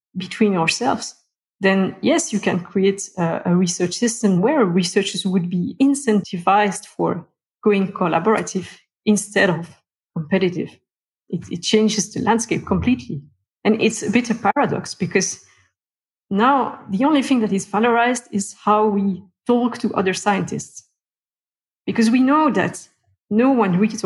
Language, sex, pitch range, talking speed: English, female, 180-220 Hz, 140 wpm